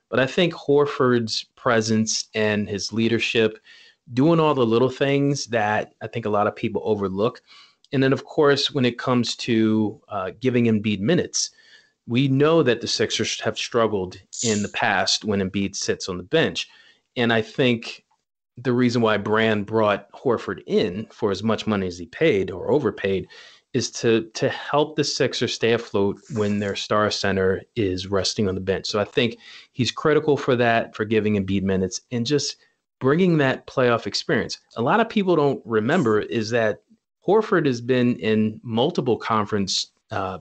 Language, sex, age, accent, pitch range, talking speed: English, male, 30-49, American, 105-130 Hz, 175 wpm